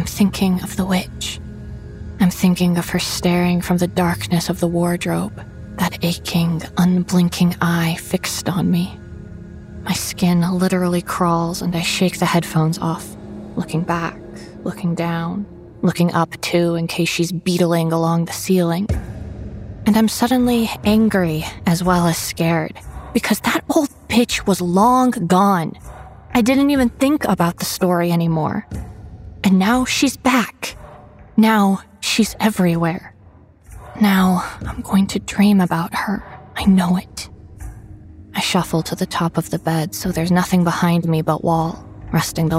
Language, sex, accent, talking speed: English, female, American, 145 wpm